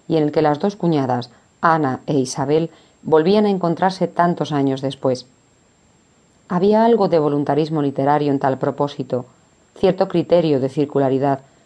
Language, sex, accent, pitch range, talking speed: Spanish, female, Spanish, 135-170 Hz, 145 wpm